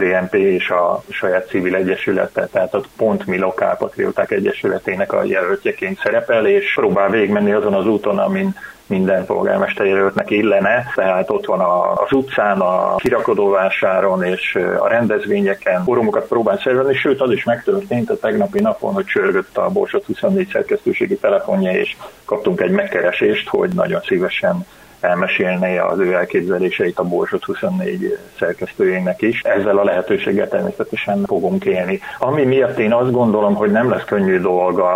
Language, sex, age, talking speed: Hungarian, male, 30-49, 145 wpm